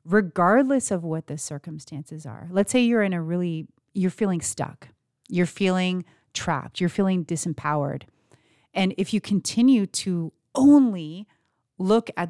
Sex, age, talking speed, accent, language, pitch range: female, 30-49, 140 wpm, American, English, 160-205 Hz